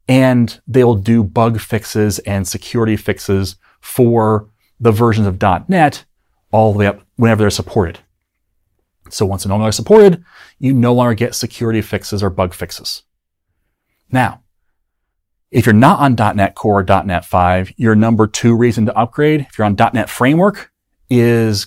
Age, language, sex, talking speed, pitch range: 30-49, English, male, 160 wpm, 100-130 Hz